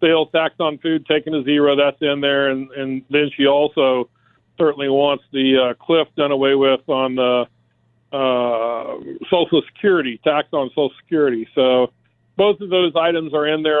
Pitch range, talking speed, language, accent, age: 135-160 Hz, 165 wpm, English, American, 50-69